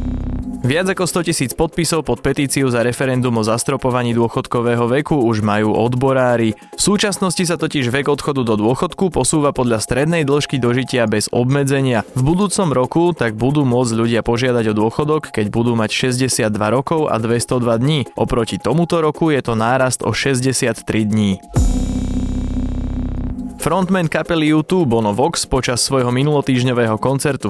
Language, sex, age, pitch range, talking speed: Slovak, male, 20-39, 110-145 Hz, 145 wpm